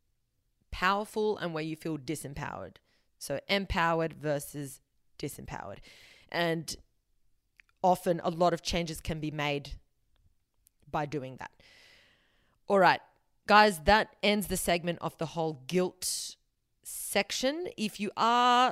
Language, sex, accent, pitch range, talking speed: English, female, Australian, 155-195 Hz, 120 wpm